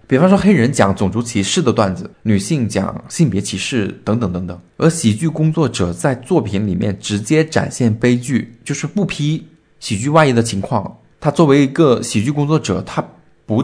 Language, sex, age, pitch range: Chinese, male, 20-39, 100-140 Hz